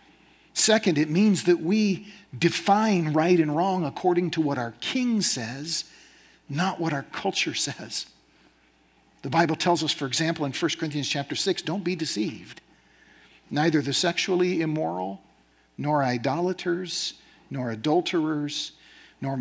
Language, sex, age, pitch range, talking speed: English, male, 50-69, 110-160 Hz, 135 wpm